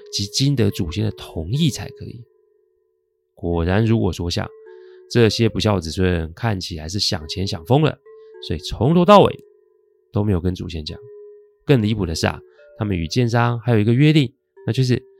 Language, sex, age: Chinese, male, 30-49